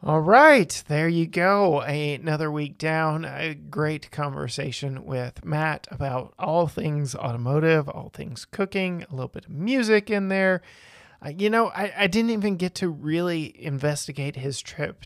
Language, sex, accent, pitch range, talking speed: English, male, American, 140-185 Hz, 160 wpm